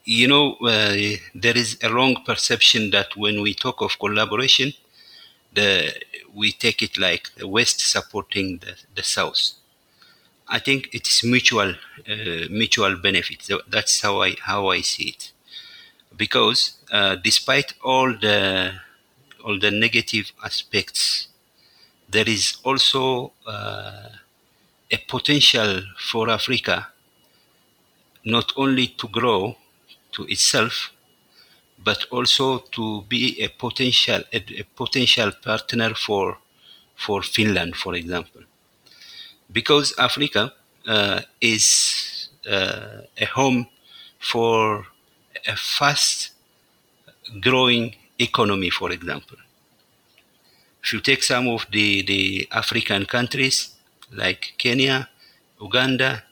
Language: Finnish